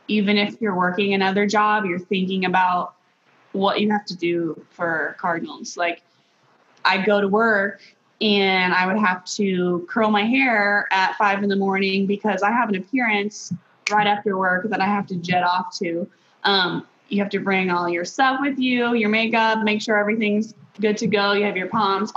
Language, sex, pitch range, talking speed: English, female, 185-215 Hz, 190 wpm